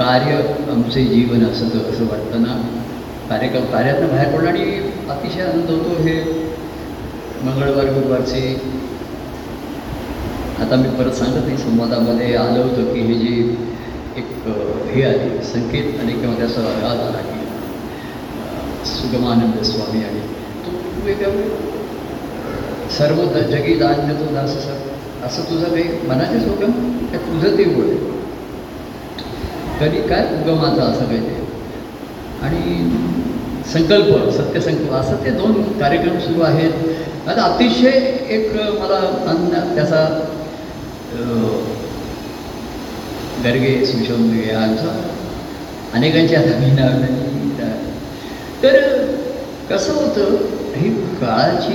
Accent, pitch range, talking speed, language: native, 120-170 Hz, 85 wpm, Marathi